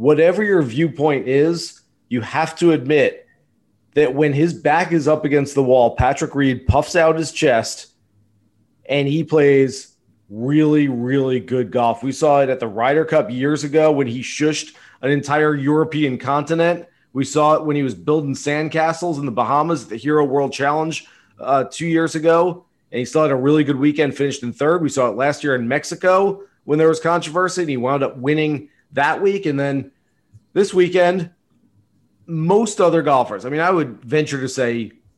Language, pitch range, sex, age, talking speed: English, 130-160 Hz, male, 30-49, 185 wpm